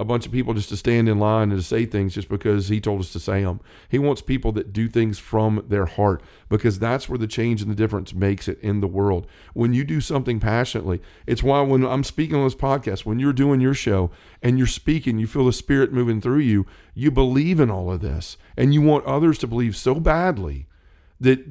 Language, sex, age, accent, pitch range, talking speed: English, male, 40-59, American, 105-130 Hz, 240 wpm